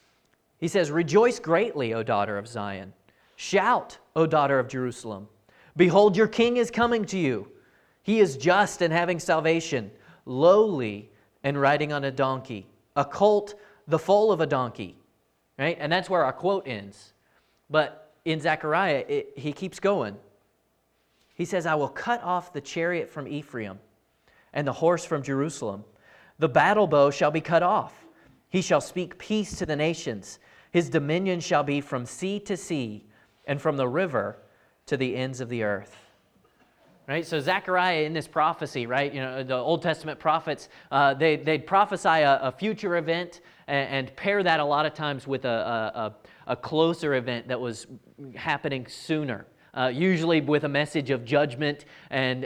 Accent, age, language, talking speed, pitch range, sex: American, 30-49, English, 170 wpm, 130-180 Hz, male